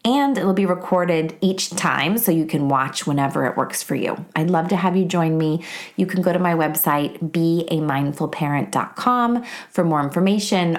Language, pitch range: English, 150-195 Hz